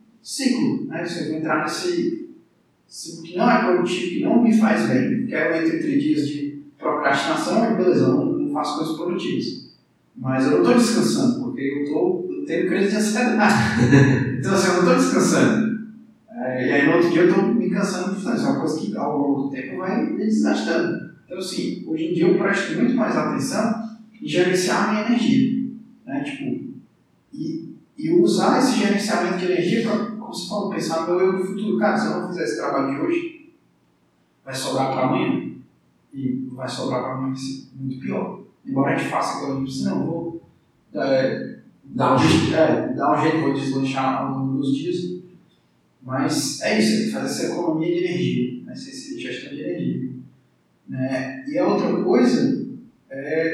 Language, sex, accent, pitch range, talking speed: Portuguese, male, Brazilian, 145-235 Hz, 190 wpm